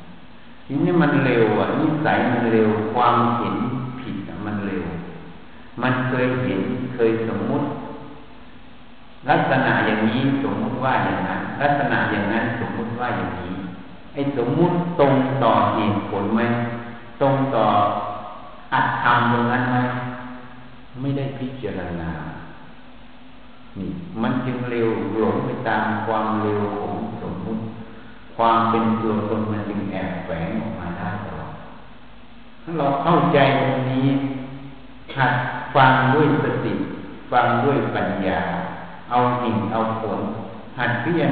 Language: Thai